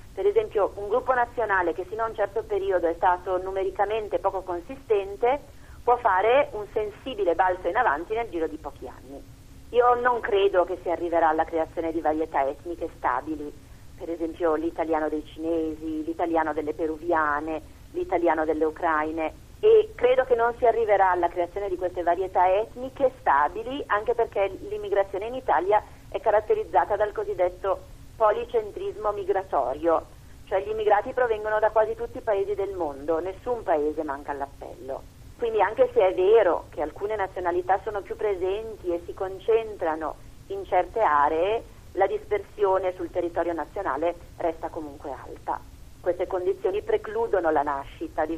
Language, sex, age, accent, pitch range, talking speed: Italian, female, 40-59, native, 165-230 Hz, 150 wpm